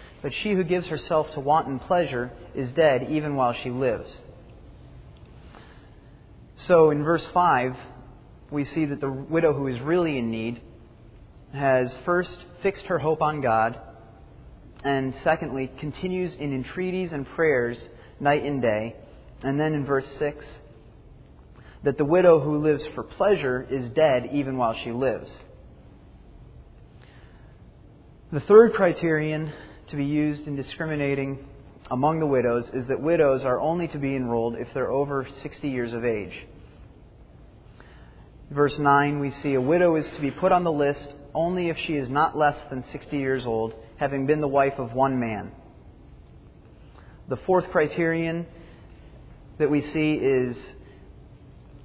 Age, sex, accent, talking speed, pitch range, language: 30-49, male, American, 145 wpm, 125-155 Hz, English